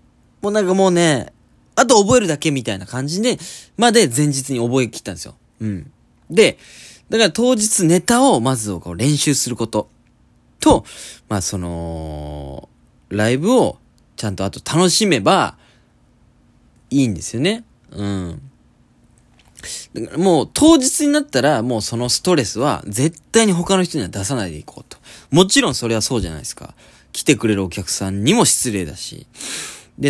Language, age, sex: Japanese, 20-39, male